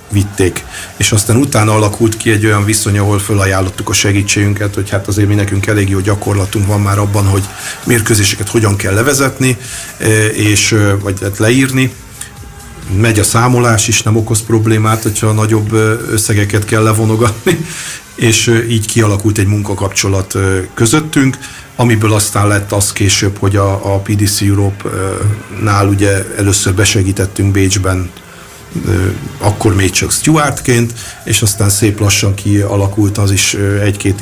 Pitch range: 95-110 Hz